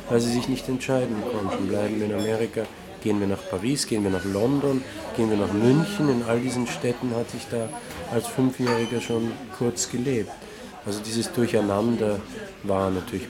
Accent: German